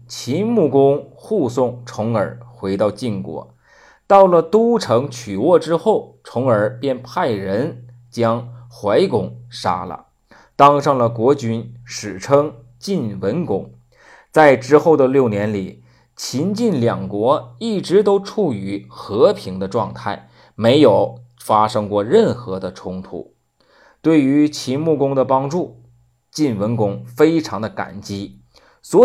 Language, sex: Chinese, male